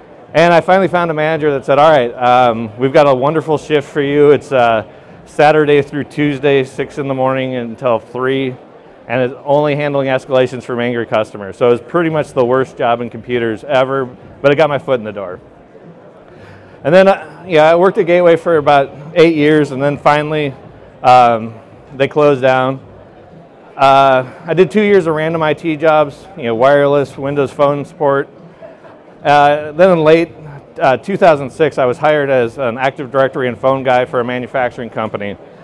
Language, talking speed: English, 185 wpm